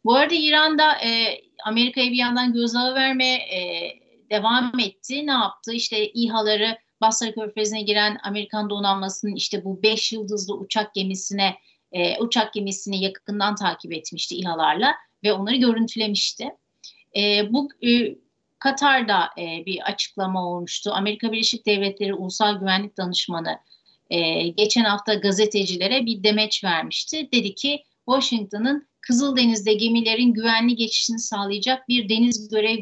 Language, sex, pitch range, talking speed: Turkish, female, 205-250 Hz, 130 wpm